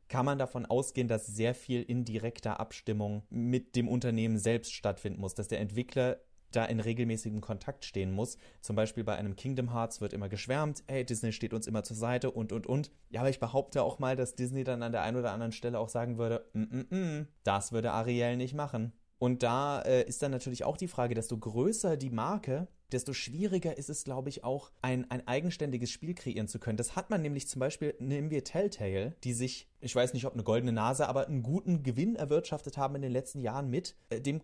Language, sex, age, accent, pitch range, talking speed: German, male, 30-49, German, 115-135 Hz, 215 wpm